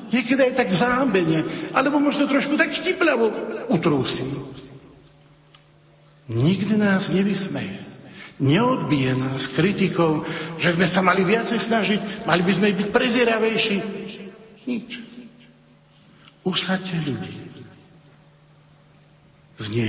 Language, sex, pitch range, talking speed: Slovak, male, 150-215 Hz, 95 wpm